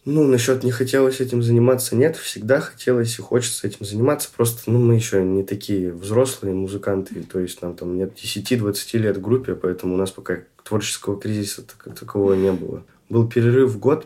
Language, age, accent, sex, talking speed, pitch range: Russian, 20-39, native, male, 185 wpm, 95-125 Hz